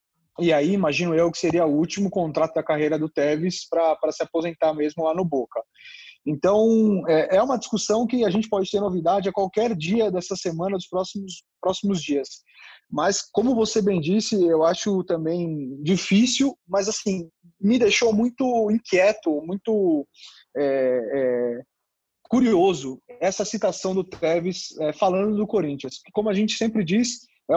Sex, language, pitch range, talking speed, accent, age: male, Portuguese, 165-210 Hz, 160 wpm, Brazilian, 20-39